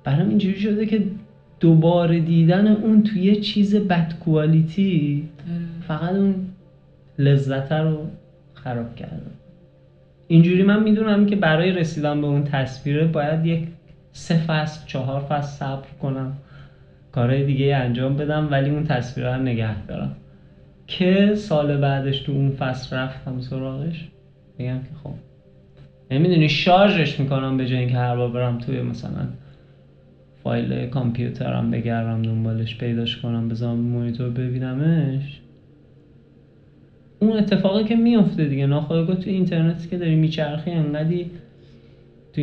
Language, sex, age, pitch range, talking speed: Persian, male, 30-49, 130-170 Hz, 125 wpm